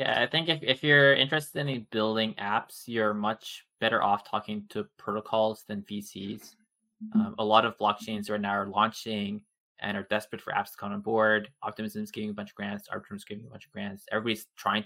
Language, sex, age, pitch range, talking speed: English, male, 20-39, 105-120 Hz, 210 wpm